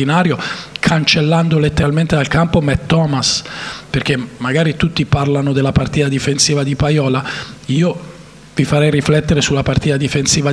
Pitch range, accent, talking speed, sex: 135-155 Hz, native, 125 wpm, male